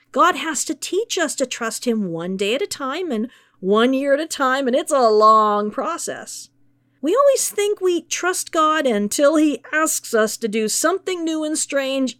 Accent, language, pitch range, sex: American, English, 210-305 Hz, female